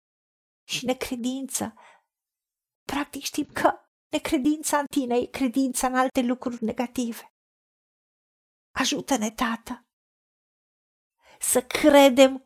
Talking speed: 85 wpm